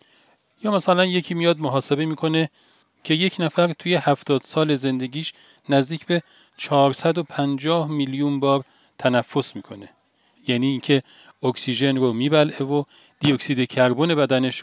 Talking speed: 120 wpm